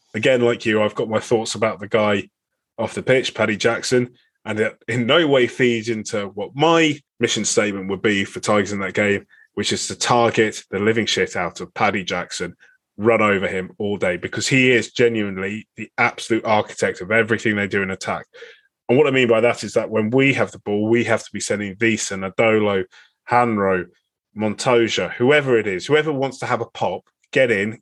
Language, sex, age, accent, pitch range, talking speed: English, male, 20-39, British, 105-125 Hz, 205 wpm